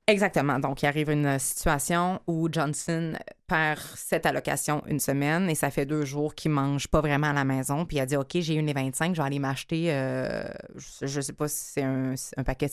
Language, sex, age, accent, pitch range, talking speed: French, female, 20-39, Canadian, 140-170 Hz, 230 wpm